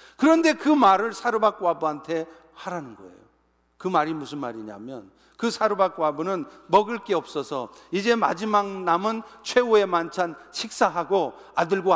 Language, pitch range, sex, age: Korean, 170-230 Hz, male, 50-69